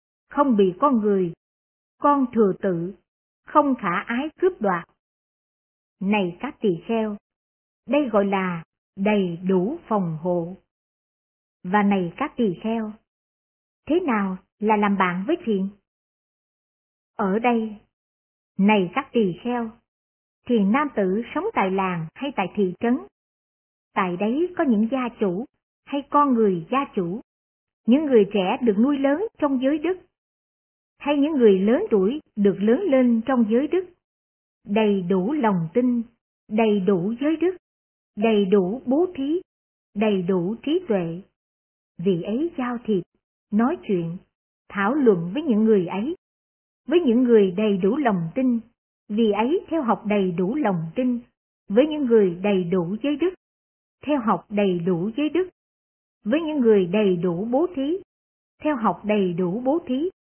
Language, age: Vietnamese, 60-79